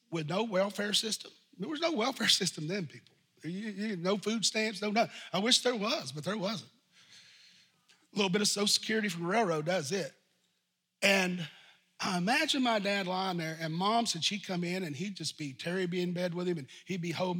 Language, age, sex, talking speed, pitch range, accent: English, 40-59, male, 210 wpm, 175-210 Hz, American